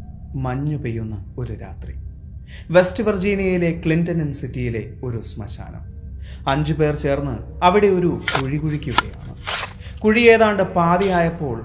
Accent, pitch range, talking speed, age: native, 110-160 Hz, 110 wpm, 30-49